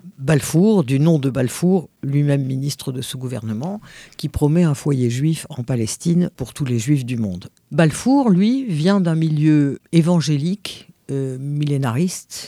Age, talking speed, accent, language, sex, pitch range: 50-69, 150 wpm, French, French, female, 135-175 Hz